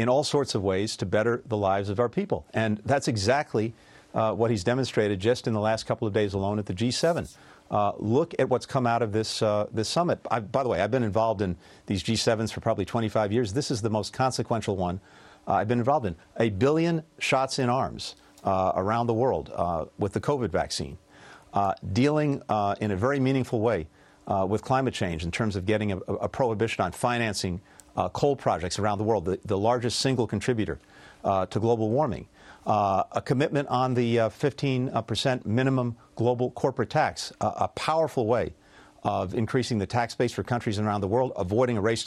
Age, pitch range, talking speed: 50-69, 105-130 Hz, 210 wpm